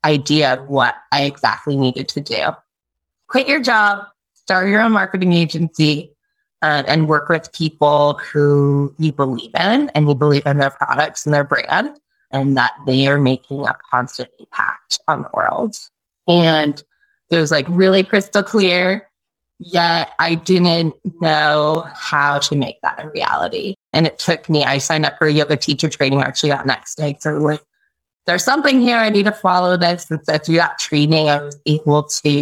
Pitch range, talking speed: 145-175 Hz, 175 wpm